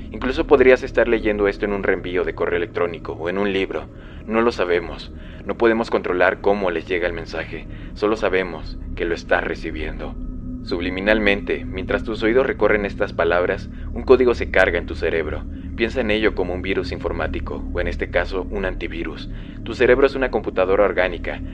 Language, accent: Spanish, Mexican